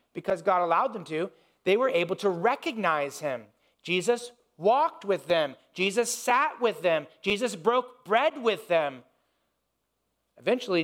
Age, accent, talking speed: 40-59, American, 140 wpm